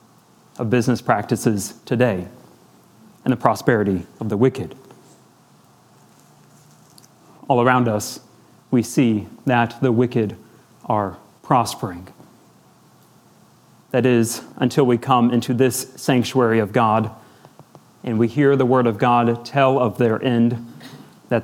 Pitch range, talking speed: 115-135 Hz, 120 wpm